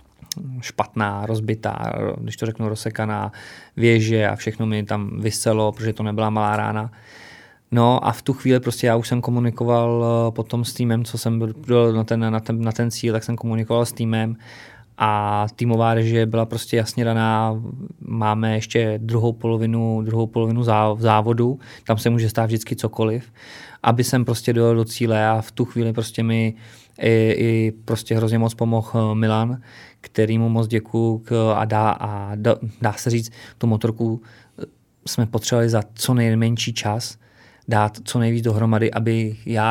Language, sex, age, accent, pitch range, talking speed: Czech, male, 20-39, native, 110-115 Hz, 160 wpm